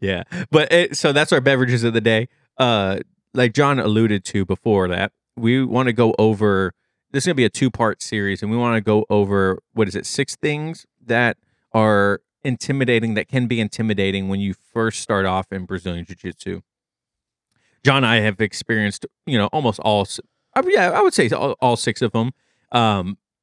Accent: American